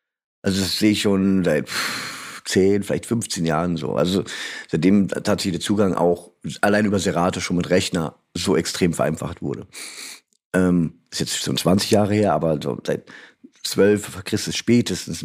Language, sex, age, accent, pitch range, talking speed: German, male, 50-69, German, 95-110 Hz, 160 wpm